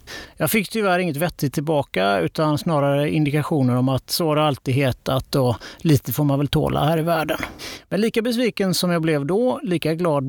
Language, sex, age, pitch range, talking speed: Swedish, male, 30-49, 130-185 Hz, 190 wpm